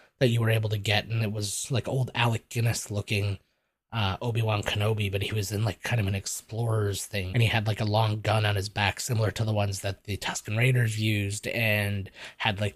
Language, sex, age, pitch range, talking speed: English, male, 20-39, 100-125 Hz, 230 wpm